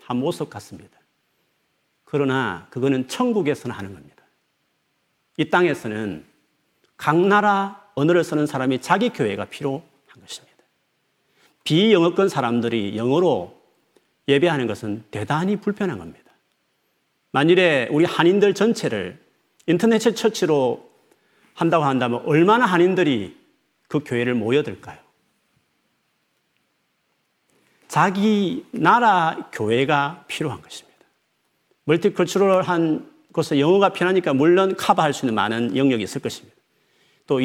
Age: 40-59